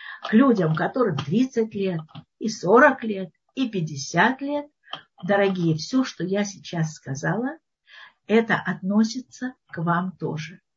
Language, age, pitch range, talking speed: Russian, 50-69, 170-250 Hz, 125 wpm